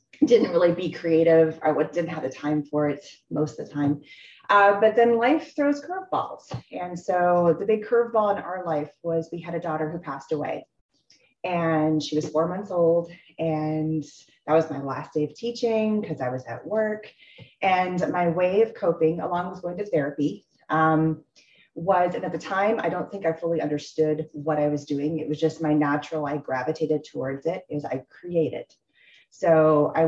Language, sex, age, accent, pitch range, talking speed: English, female, 30-49, American, 150-180 Hz, 190 wpm